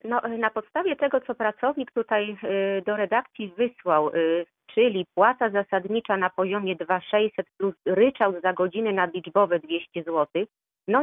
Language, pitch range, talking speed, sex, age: Polish, 195-245 Hz, 140 wpm, female, 40-59